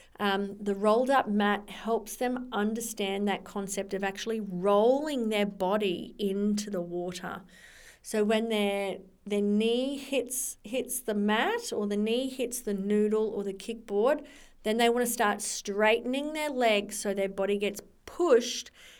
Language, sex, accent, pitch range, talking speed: English, female, Australian, 200-240 Hz, 150 wpm